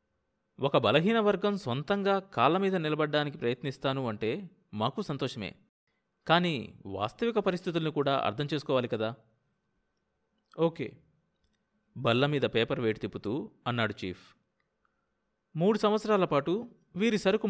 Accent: native